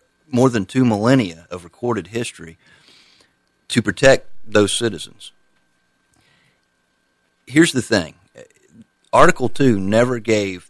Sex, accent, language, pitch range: male, American, English, 90-115 Hz